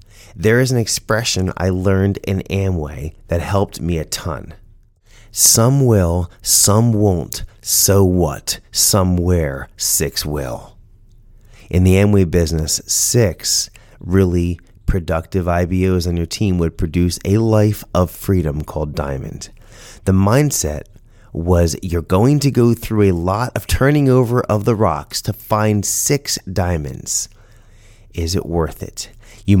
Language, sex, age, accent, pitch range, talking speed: English, male, 30-49, American, 90-115 Hz, 135 wpm